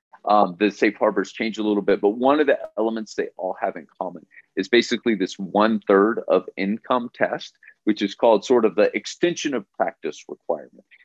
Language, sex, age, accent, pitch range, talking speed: English, male, 40-59, American, 100-135 Hz, 195 wpm